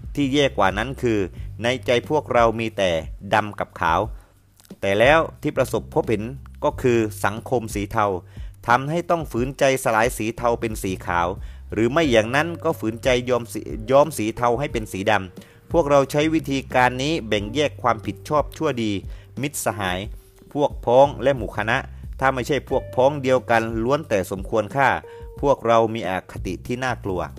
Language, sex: English, male